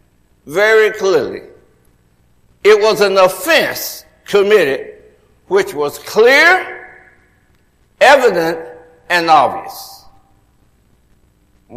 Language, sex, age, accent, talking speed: English, male, 60-79, American, 70 wpm